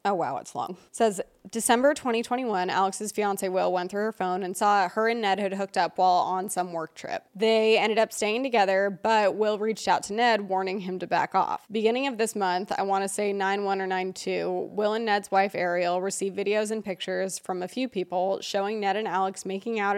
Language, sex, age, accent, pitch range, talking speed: English, female, 20-39, American, 190-230 Hz, 220 wpm